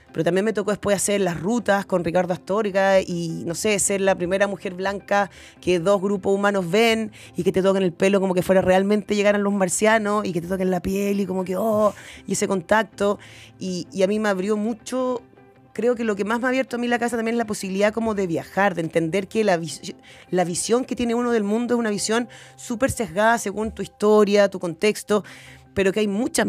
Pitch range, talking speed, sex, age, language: 180-215 Hz, 235 wpm, female, 30-49, Spanish